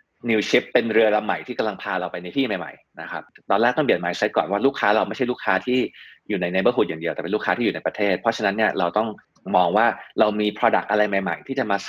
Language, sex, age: Thai, male, 20-39